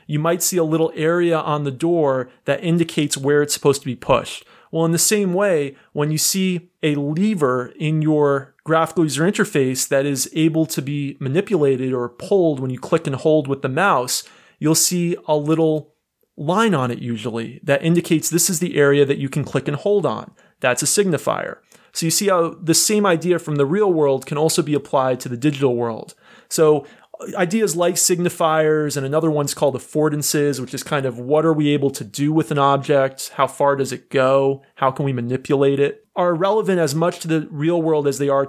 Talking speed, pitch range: 210 wpm, 140-170 Hz